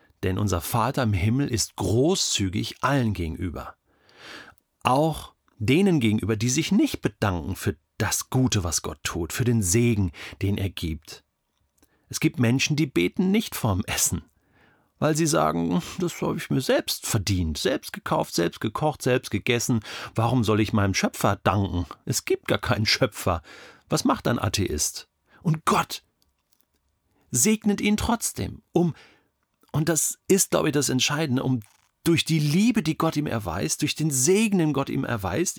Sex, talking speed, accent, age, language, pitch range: male, 160 wpm, German, 40-59, German, 95-155 Hz